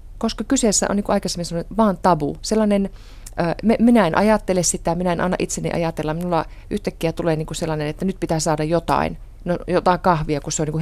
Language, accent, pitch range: Finnish, native, 155-190 Hz